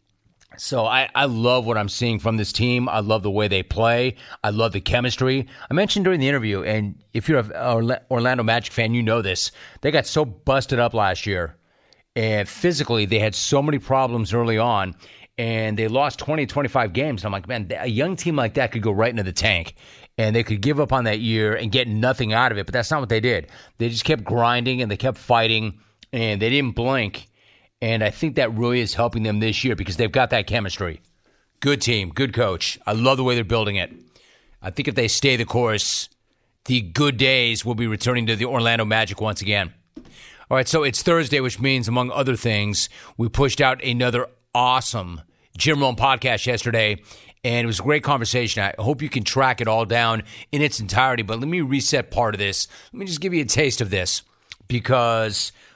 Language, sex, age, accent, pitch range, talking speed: English, male, 30-49, American, 105-130 Hz, 215 wpm